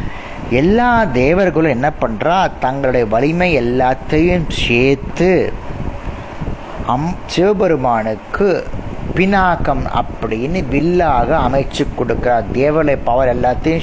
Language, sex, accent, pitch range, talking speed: Tamil, male, native, 120-165 Hz, 55 wpm